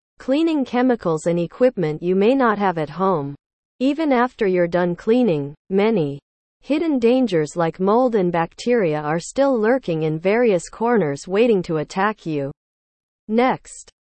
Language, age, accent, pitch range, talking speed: English, 40-59, American, 165-235 Hz, 140 wpm